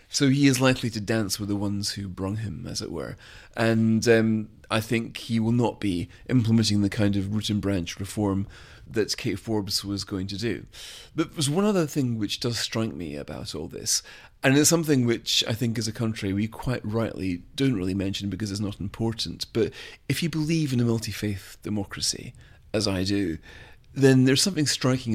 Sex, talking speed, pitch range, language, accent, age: male, 200 wpm, 100-120 Hz, English, British, 40-59